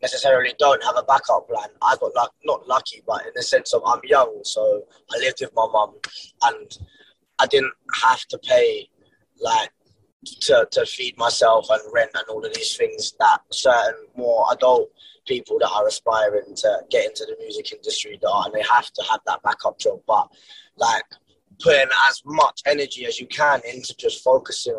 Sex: male